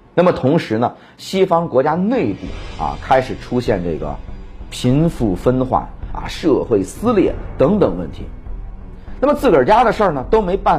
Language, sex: Chinese, male